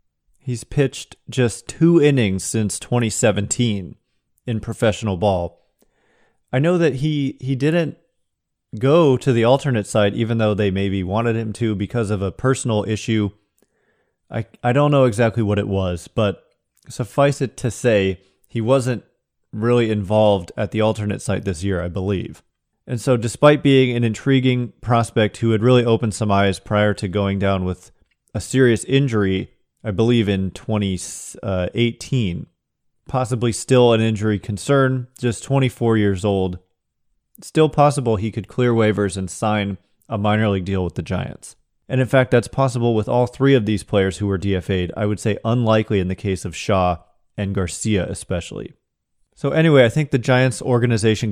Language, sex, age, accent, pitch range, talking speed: English, male, 30-49, American, 100-125 Hz, 165 wpm